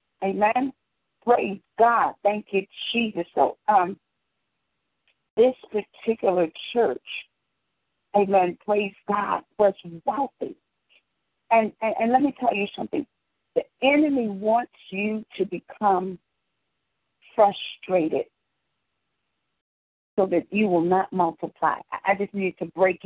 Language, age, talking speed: English, 50-69, 110 wpm